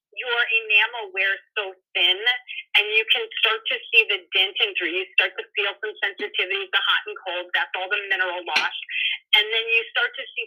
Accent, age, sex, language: American, 30-49, female, Chinese